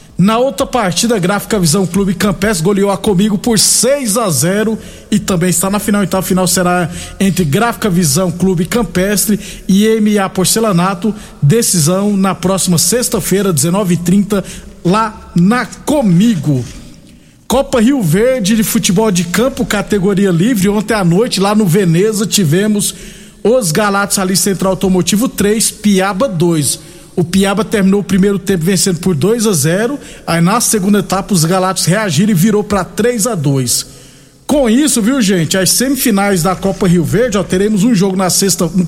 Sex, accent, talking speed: male, Brazilian, 160 wpm